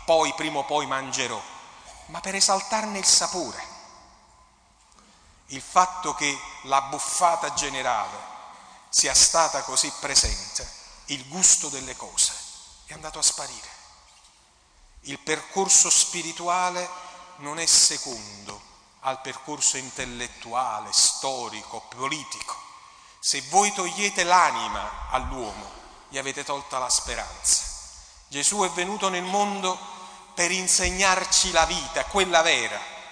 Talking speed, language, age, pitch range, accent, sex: 110 wpm, Italian, 40-59, 135-190 Hz, native, male